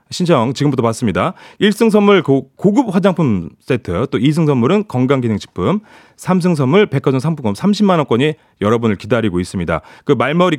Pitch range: 120-190 Hz